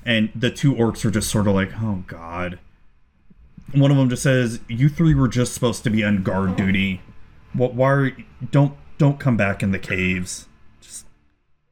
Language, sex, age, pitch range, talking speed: English, male, 30-49, 95-120 Hz, 195 wpm